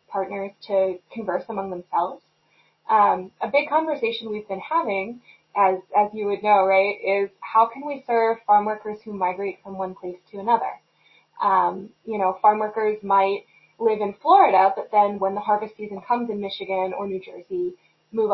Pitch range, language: 190-225 Hz, English